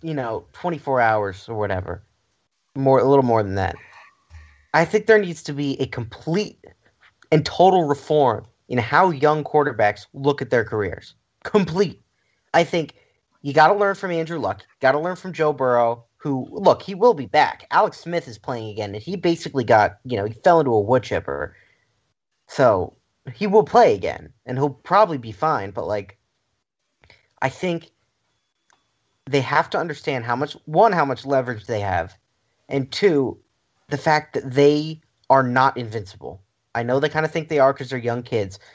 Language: English